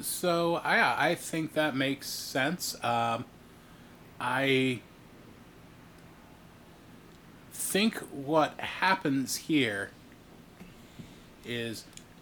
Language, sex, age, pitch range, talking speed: English, male, 30-49, 120-155 Hz, 70 wpm